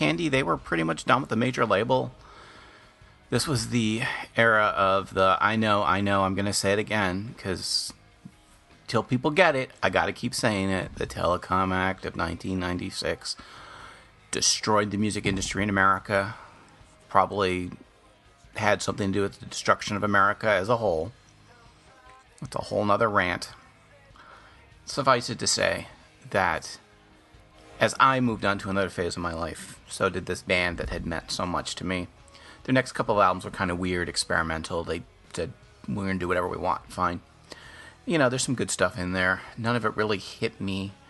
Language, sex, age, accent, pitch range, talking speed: English, male, 40-59, American, 90-110 Hz, 180 wpm